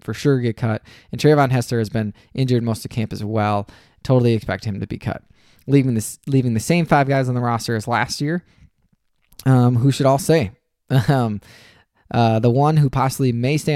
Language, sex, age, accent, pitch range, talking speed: English, male, 20-39, American, 115-135 Hz, 205 wpm